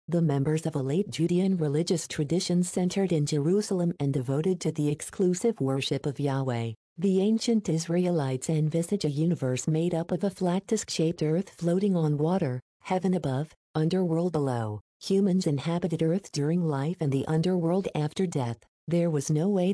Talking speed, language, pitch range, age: 160 wpm, English, 150-185 Hz, 50-69